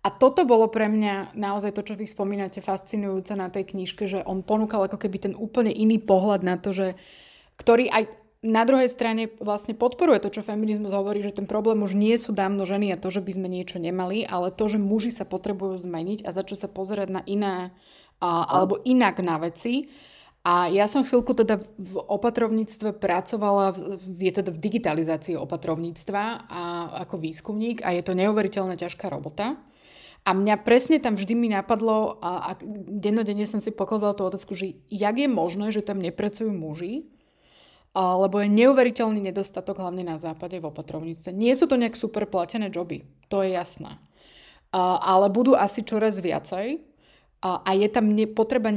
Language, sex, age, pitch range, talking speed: Slovak, female, 20-39, 185-220 Hz, 180 wpm